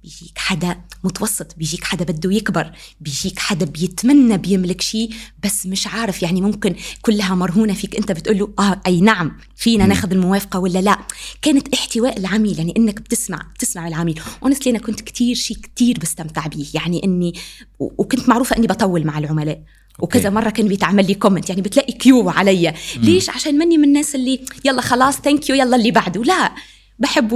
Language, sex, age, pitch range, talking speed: Arabic, female, 20-39, 190-245 Hz, 170 wpm